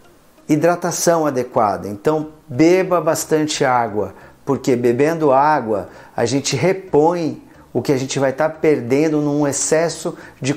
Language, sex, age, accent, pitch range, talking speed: Portuguese, male, 50-69, Brazilian, 135-165 Hz, 130 wpm